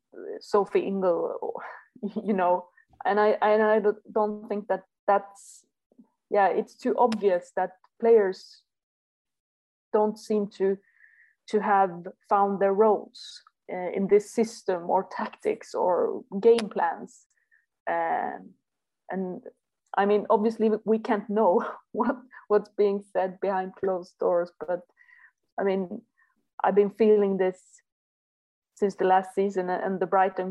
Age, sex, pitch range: 30-49, female, 185-215 Hz